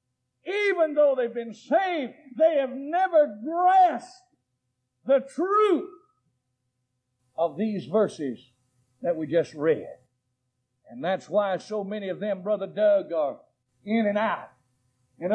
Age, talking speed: 60-79, 125 wpm